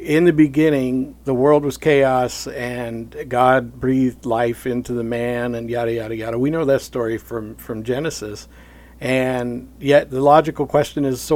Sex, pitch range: male, 110-135 Hz